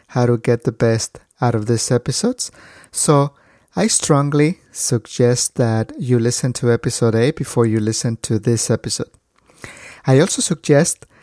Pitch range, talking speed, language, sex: 115-145 Hz, 150 wpm, English, male